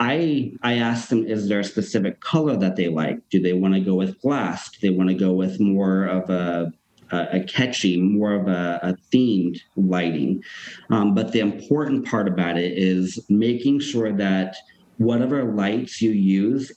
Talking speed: 185 wpm